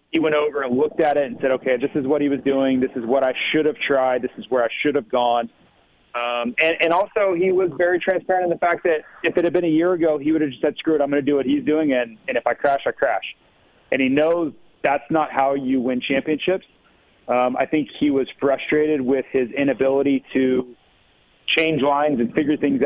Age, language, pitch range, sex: 30-49, English, 130-160 Hz, male